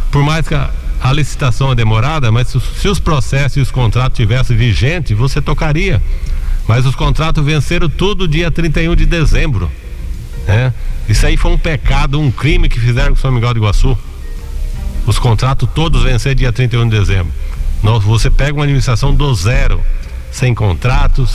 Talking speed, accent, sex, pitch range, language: 175 wpm, Brazilian, male, 105-135 Hz, Portuguese